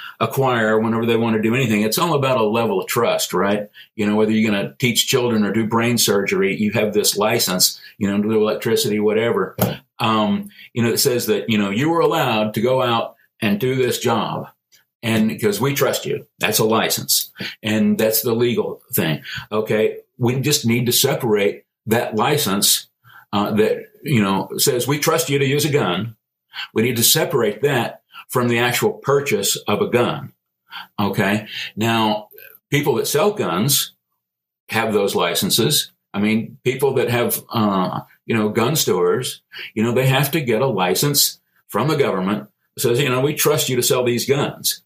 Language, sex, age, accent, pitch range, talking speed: English, male, 50-69, American, 105-135 Hz, 190 wpm